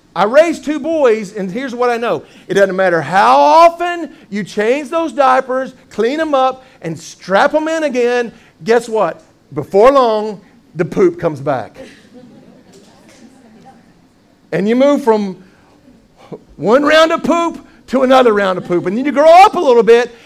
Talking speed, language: 165 wpm, English